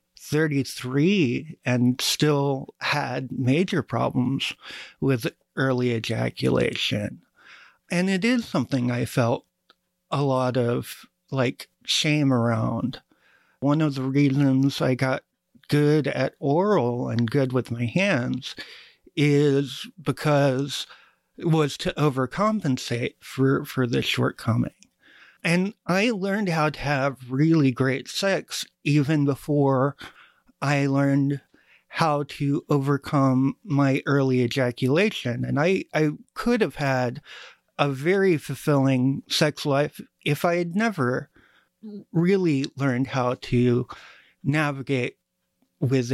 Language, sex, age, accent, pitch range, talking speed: English, male, 50-69, American, 130-160 Hz, 110 wpm